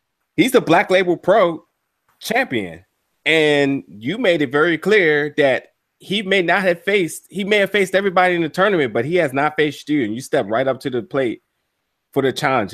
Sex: male